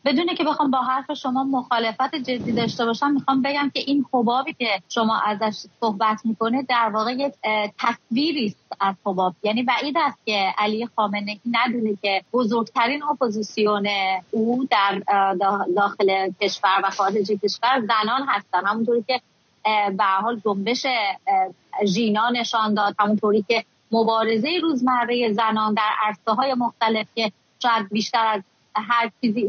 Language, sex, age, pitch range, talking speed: English, female, 30-49, 210-255 Hz, 140 wpm